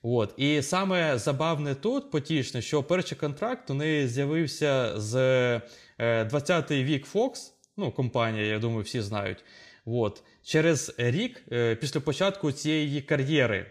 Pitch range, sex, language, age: 120-160 Hz, male, Ukrainian, 20-39